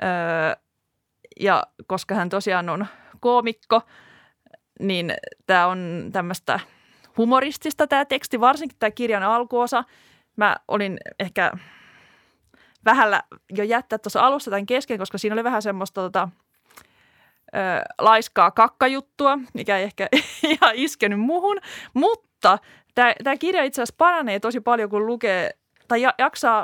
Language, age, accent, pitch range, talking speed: Finnish, 20-39, native, 190-250 Hz, 125 wpm